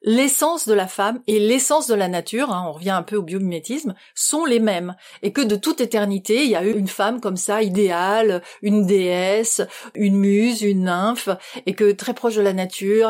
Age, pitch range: 40-59, 195-240 Hz